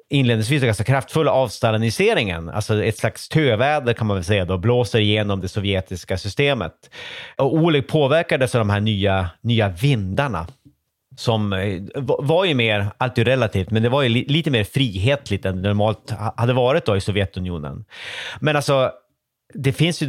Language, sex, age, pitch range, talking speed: Swedish, male, 30-49, 105-140 Hz, 160 wpm